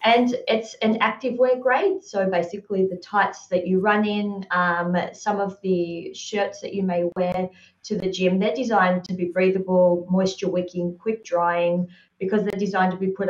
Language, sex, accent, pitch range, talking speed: English, female, Australian, 180-210 Hz, 175 wpm